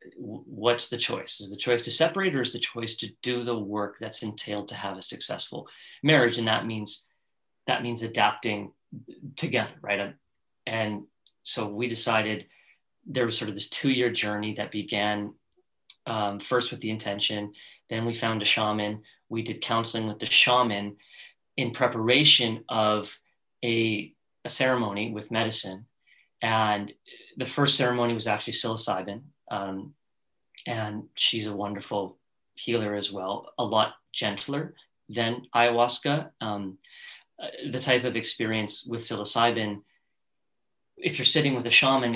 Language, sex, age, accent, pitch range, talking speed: English, male, 30-49, American, 105-120 Hz, 145 wpm